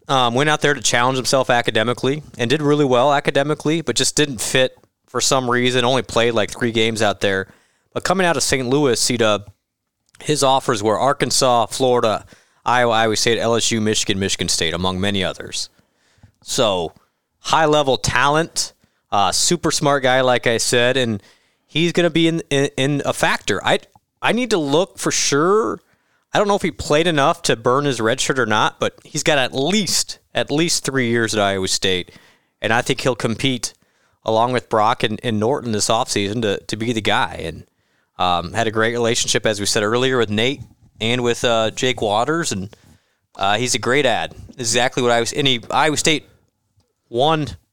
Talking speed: 190 wpm